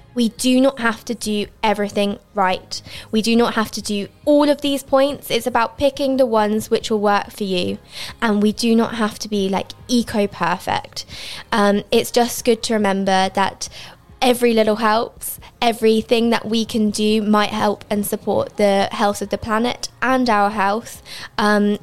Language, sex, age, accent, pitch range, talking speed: English, female, 20-39, British, 200-235 Hz, 175 wpm